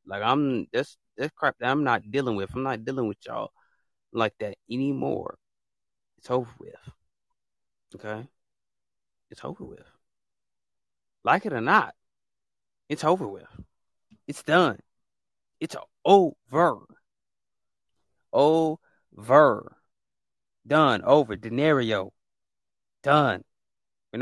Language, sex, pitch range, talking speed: English, male, 110-155 Hz, 105 wpm